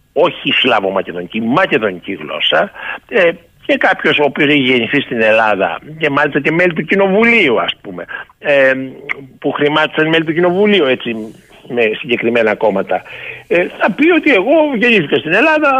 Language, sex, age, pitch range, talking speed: Greek, male, 60-79, 140-225 Hz, 135 wpm